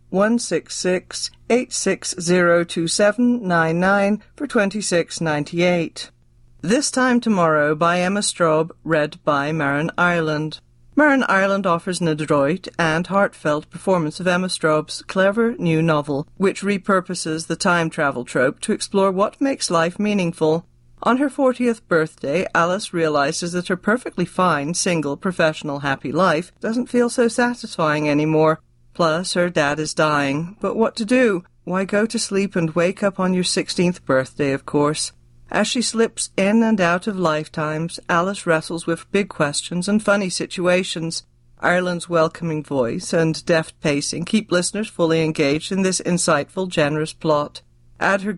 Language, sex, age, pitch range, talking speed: English, female, 40-59, 155-195 Hz, 155 wpm